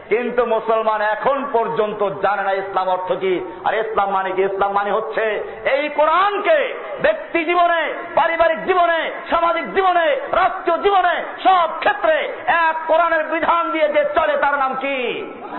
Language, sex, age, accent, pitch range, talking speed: Bengali, male, 50-69, native, 205-275 Hz, 125 wpm